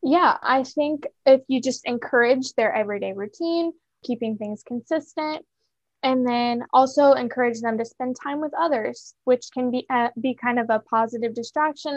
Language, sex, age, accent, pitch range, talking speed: English, female, 10-29, American, 220-265 Hz, 165 wpm